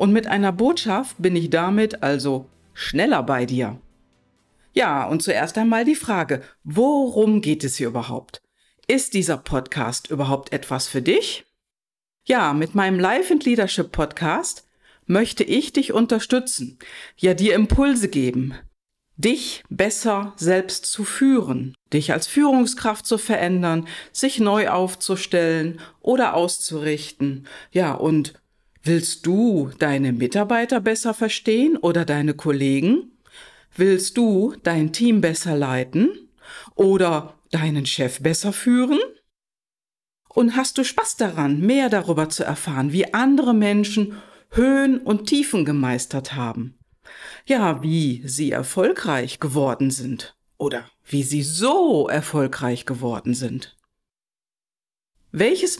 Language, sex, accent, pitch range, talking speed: German, female, German, 145-225 Hz, 120 wpm